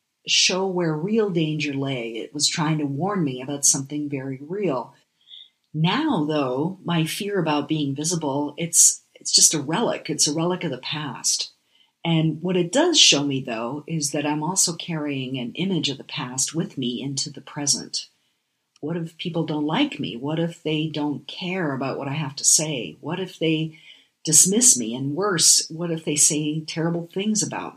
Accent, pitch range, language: American, 140-170 Hz, English